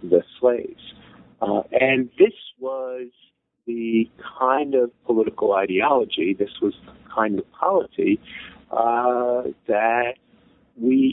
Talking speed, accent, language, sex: 110 wpm, American, English, male